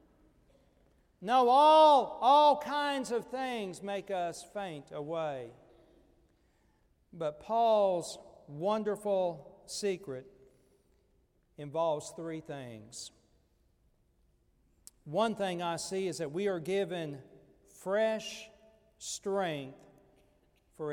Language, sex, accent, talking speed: English, male, American, 85 wpm